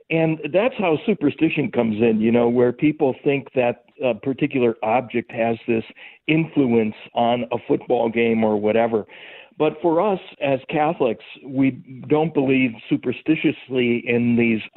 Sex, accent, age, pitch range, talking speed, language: male, American, 60-79, 115-140 Hz, 140 wpm, English